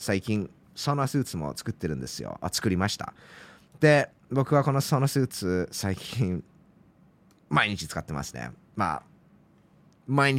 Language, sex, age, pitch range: Japanese, male, 20-39, 95-135 Hz